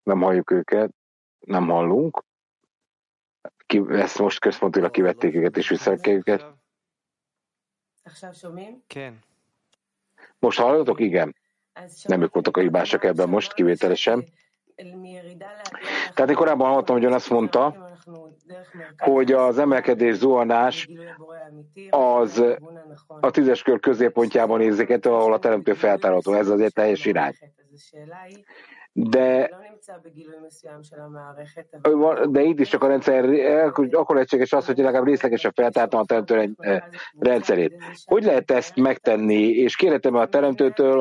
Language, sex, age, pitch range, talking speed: English, male, 50-69, 120-160 Hz, 110 wpm